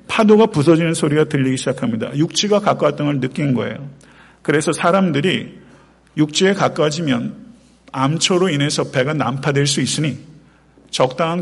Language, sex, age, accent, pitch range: Korean, male, 50-69, native, 130-180 Hz